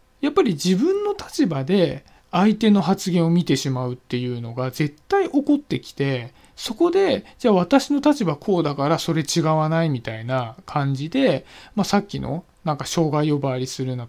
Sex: male